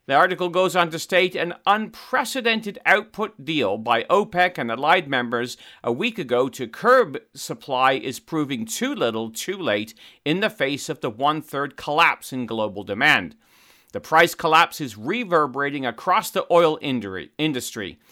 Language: English